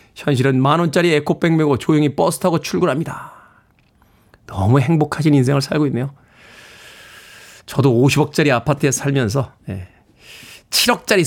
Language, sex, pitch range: Korean, male, 130-170 Hz